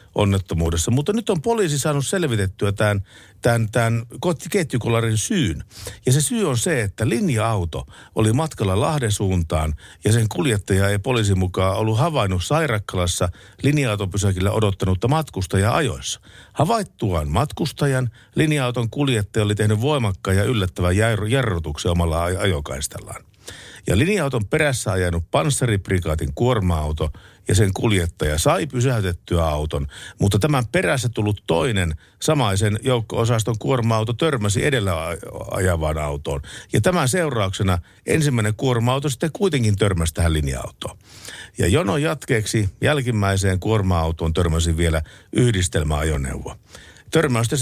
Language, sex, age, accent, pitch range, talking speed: Finnish, male, 50-69, native, 90-125 Hz, 115 wpm